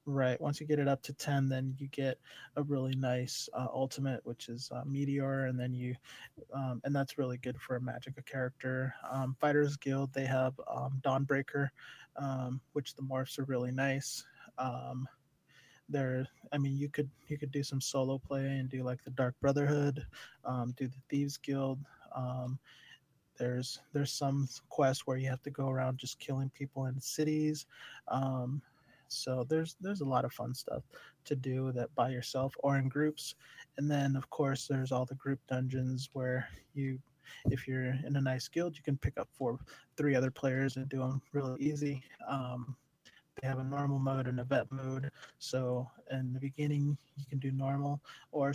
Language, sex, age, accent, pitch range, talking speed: English, male, 20-39, American, 130-140 Hz, 185 wpm